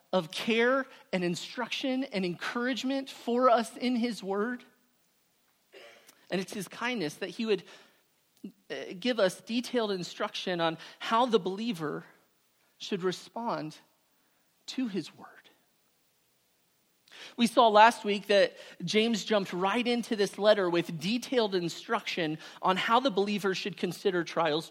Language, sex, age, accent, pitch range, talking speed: English, male, 40-59, American, 185-235 Hz, 125 wpm